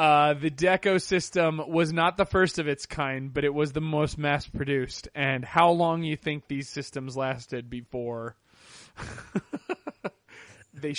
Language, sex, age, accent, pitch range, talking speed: English, male, 30-49, American, 135-170 Hz, 145 wpm